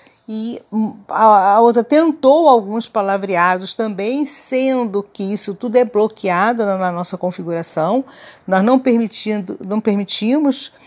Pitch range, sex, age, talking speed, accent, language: 185-250 Hz, female, 50-69, 115 wpm, Brazilian, Portuguese